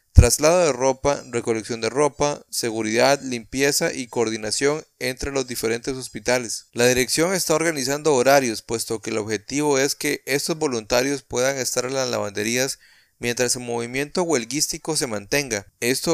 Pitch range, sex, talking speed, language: 115-145 Hz, male, 145 wpm, Spanish